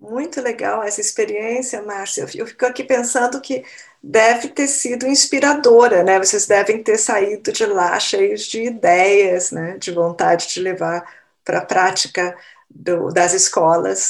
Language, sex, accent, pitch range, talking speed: Portuguese, female, Brazilian, 190-255 Hz, 150 wpm